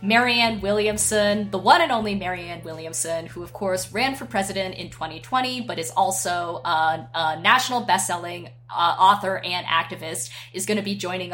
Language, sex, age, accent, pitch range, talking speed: English, female, 20-39, American, 175-215 Hz, 170 wpm